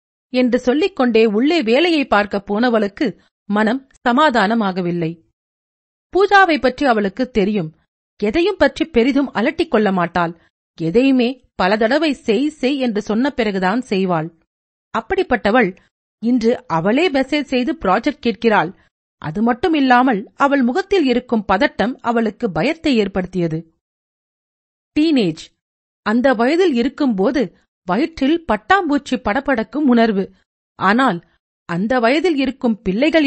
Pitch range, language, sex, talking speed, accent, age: 205-285 Hz, Tamil, female, 95 wpm, native, 40-59